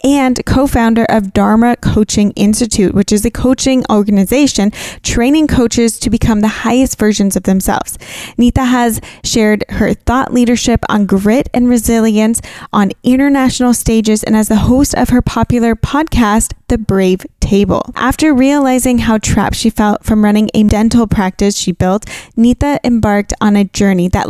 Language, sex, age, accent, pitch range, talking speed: English, female, 10-29, American, 205-245 Hz, 155 wpm